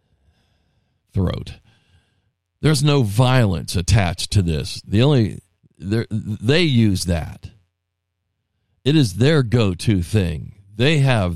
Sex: male